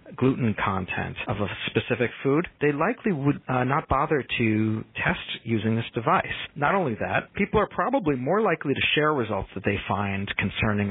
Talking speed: 175 wpm